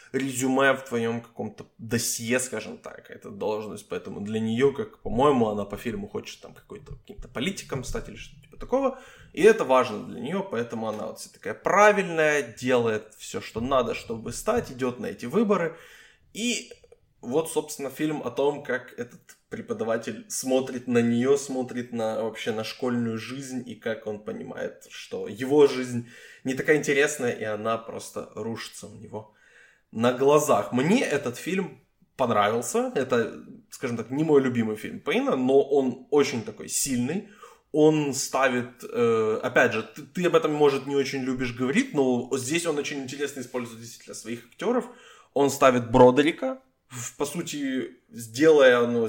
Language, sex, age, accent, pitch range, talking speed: Ukrainian, male, 20-39, native, 120-155 Hz, 160 wpm